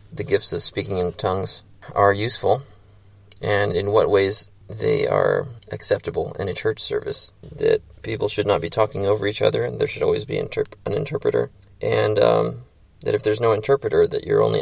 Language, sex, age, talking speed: English, male, 20-39, 185 wpm